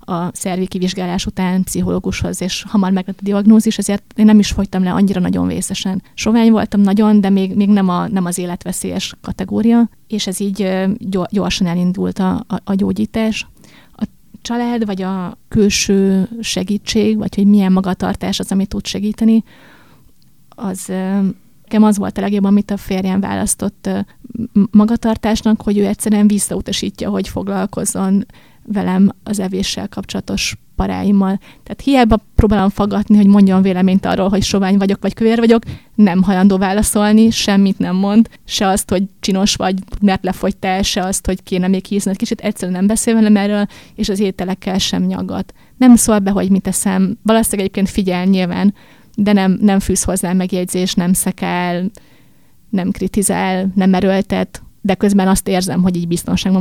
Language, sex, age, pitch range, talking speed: Hungarian, female, 30-49, 190-210 Hz, 160 wpm